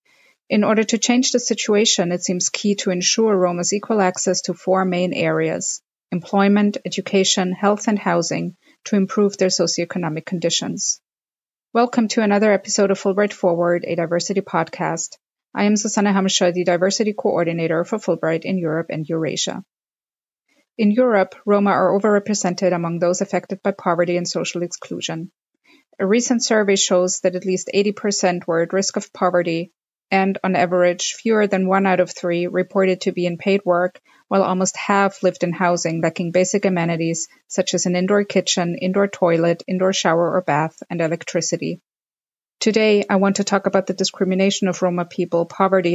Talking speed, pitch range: 165 wpm, 175-200 Hz